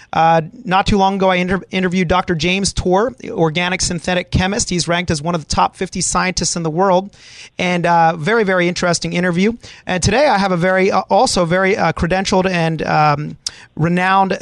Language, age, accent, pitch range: English, 30-49, American, 175-200 Hz